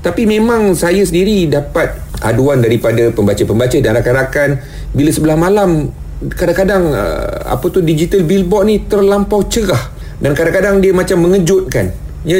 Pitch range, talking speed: 105-160 Hz, 130 wpm